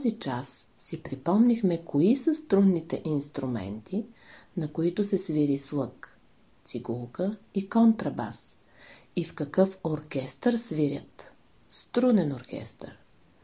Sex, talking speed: female, 105 wpm